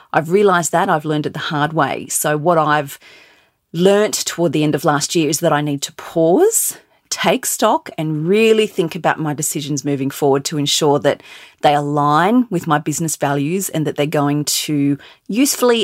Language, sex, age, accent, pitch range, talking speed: English, female, 30-49, Australian, 150-180 Hz, 190 wpm